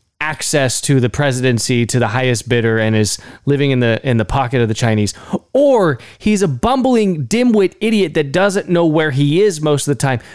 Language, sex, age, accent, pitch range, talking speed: English, male, 20-39, American, 130-205 Hz, 205 wpm